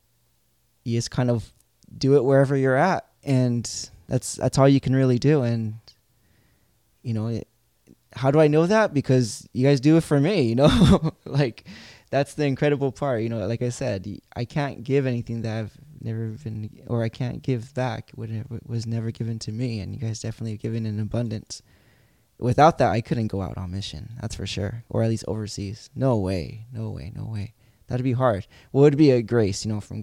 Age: 20-39